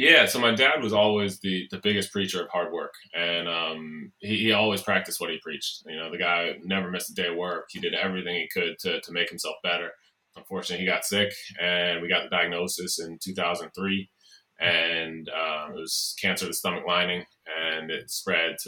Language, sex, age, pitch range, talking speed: English, male, 20-39, 85-100 Hz, 210 wpm